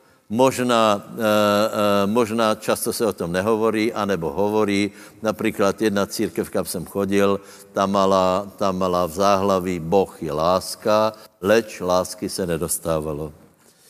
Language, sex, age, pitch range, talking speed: Slovak, male, 60-79, 95-120 Hz, 120 wpm